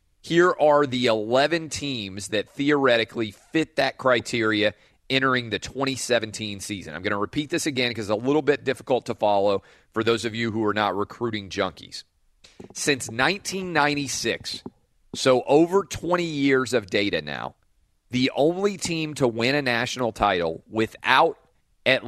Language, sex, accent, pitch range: English, male, American, 110-145 Hz